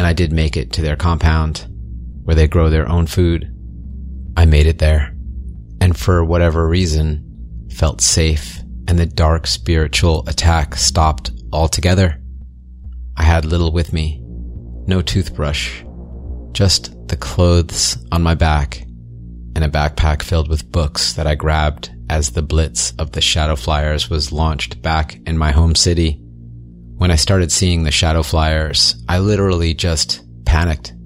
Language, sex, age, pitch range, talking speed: English, male, 30-49, 70-85 Hz, 150 wpm